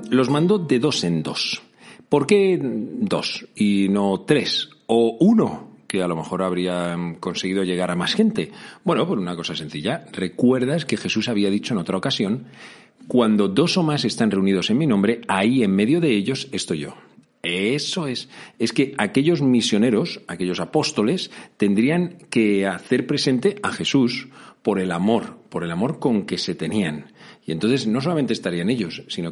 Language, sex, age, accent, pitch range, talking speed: Spanish, male, 40-59, Spanish, 90-125 Hz, 170 wpm